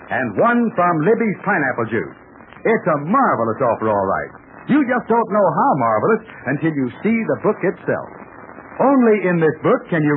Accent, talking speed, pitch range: American, 175 wpm, 170-230 Hz